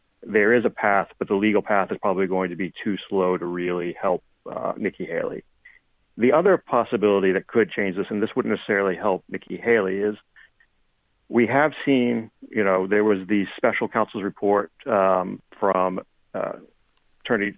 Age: 40-59